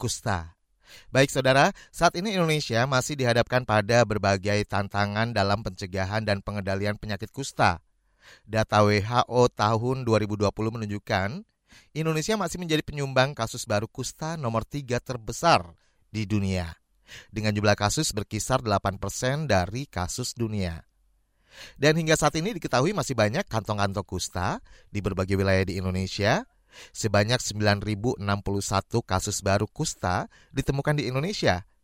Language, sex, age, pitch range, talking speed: Indonesian, male, 30-49, 100-130 Hz, 120 wpm